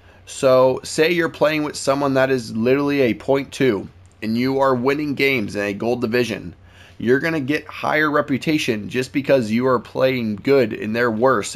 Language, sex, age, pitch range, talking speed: English, male, 20-39, 100-135 Hz, 180 wpm